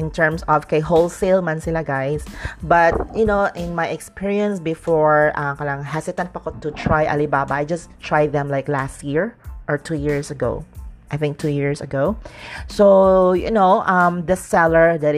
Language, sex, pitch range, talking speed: English, female, 145-180 Hz, 190 wpm